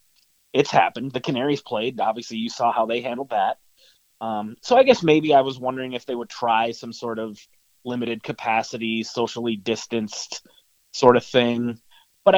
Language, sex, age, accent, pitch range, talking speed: English, male, 30-49, American, 115-140 Hz, 170 wpm